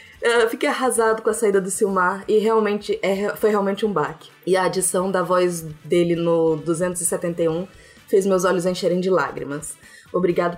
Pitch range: 180-235 Hz